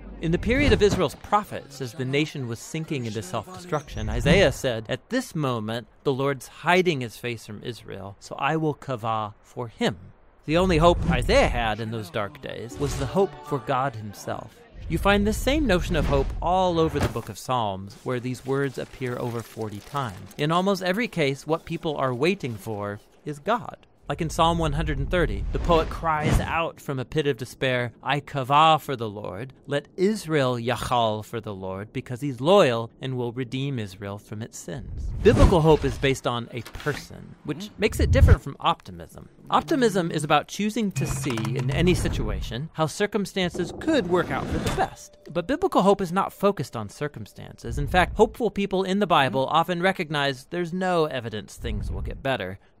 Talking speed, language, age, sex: 190 wpm, English, 40-59, male